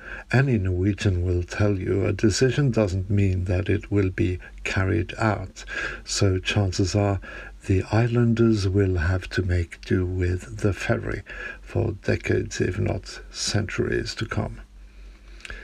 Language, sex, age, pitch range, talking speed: English, male, 60-79, 95-110 Hz, 135 wpm